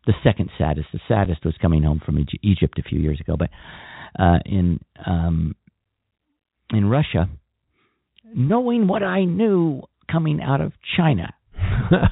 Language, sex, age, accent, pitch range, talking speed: English, male, 50-69, American, 95-125 Hz, 140 wpm